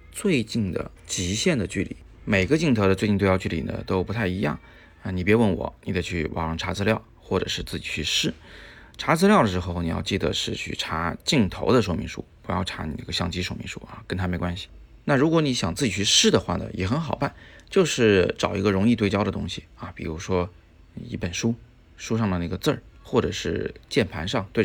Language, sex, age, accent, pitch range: Chinese, male, 20-39, native, 90-110 Hz